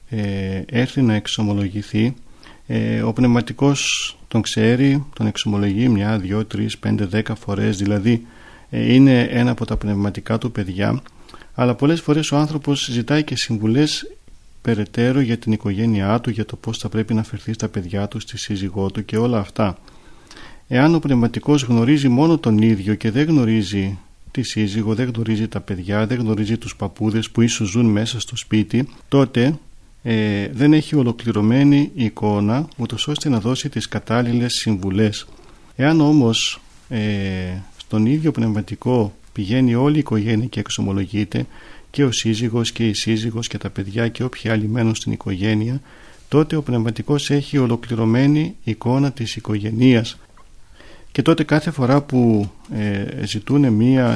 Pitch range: 105-125 Hz